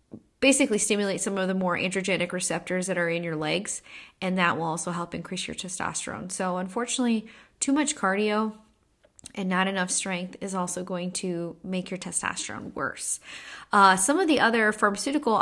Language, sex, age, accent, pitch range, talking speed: English, female, 10-29, American, 180-225 Hz, 170 wpm